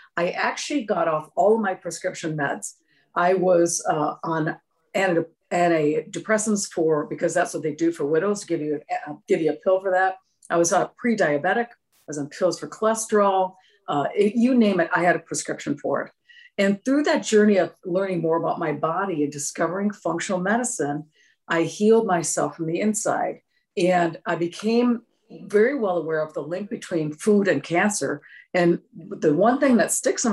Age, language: 50-69, English